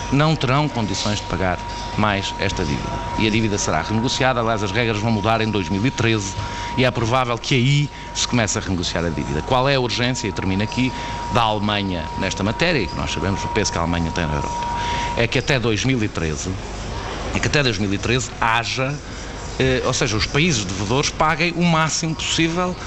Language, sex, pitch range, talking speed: Portuguese, male, 100-135 Hz, 190 wpm